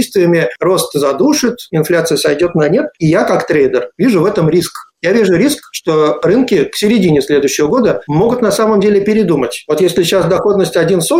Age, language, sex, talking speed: 50-69, Russian, male, 170 wpm